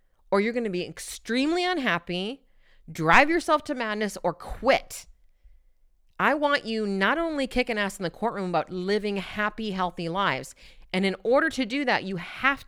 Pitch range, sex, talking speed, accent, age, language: 185-260 Hz, female, 170 wpm, American, 40-59, English